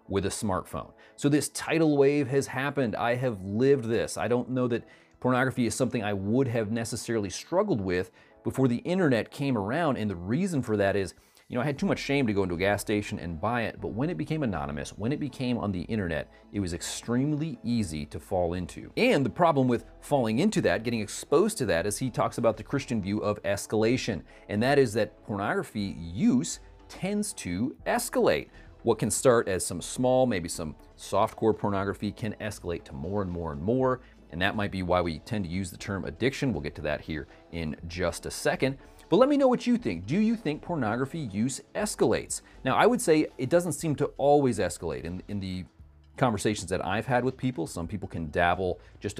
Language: English